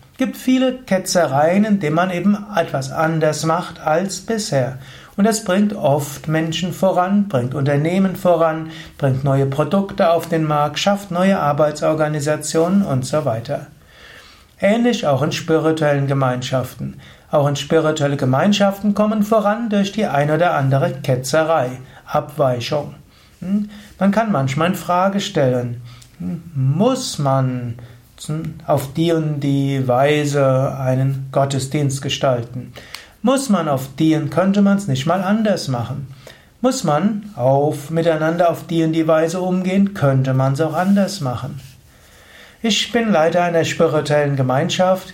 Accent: German